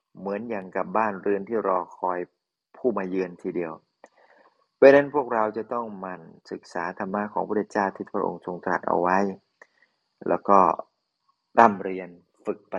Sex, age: male, 30-49